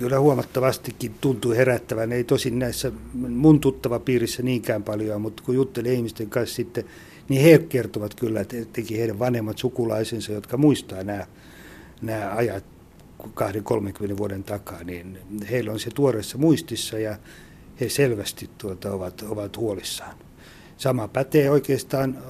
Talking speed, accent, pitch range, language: 135 wpm, native, 105-125 Hz, Finnish